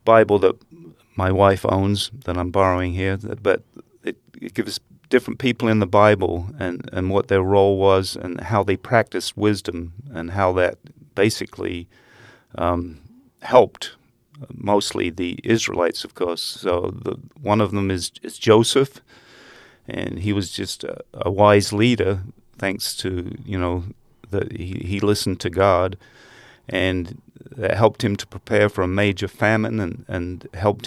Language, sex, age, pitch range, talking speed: English, male, 40-59, 95-110 Hz, 155 wpm